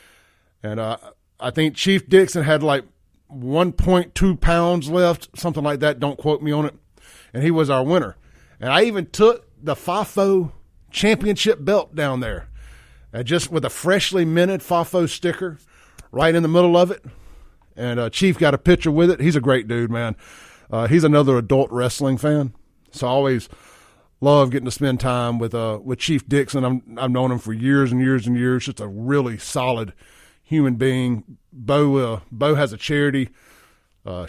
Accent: American